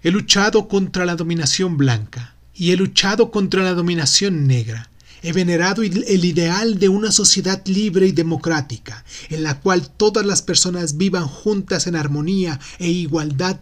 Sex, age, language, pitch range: male, 30-49, Spanish, 130-185 Hz